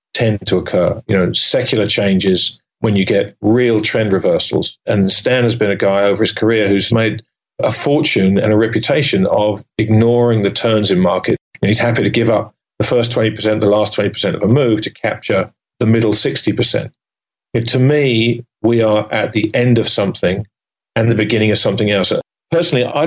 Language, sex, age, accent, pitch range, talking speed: English, male, 40-59, British, 105-120 Hz, 190 wpm